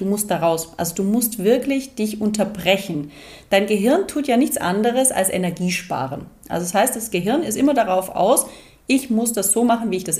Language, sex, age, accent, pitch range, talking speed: German, female, 30-49, German, 180-235 Hz, 200 wpm